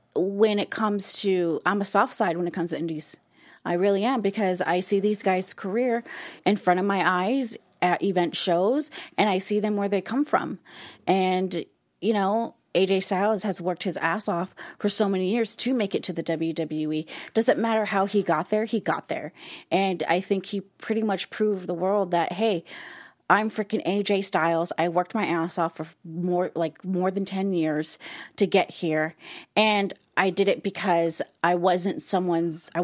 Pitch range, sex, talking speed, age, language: 180-235 Hz, female, 195 wpm, 30-49, English